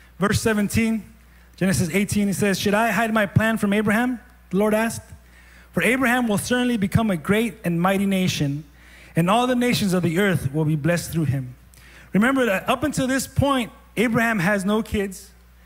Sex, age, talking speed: male, 30-49, 185 wpm